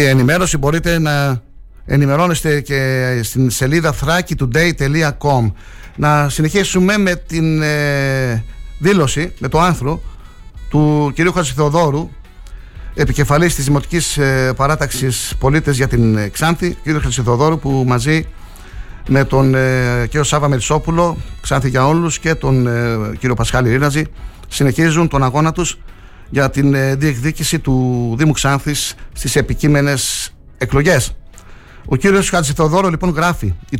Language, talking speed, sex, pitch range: Greek, 110 wpm, male, 125-160 Hz